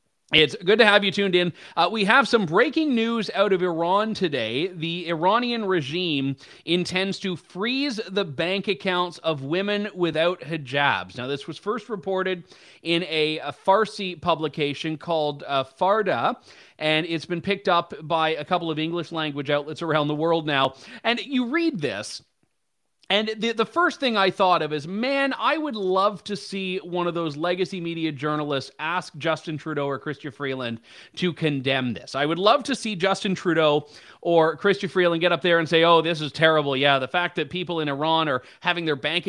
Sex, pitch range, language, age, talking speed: male, 155-195 Hz, English, 30-49, 185 wpm